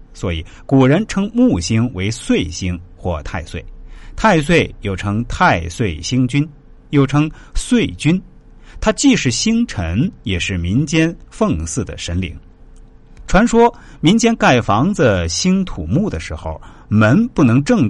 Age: 50-69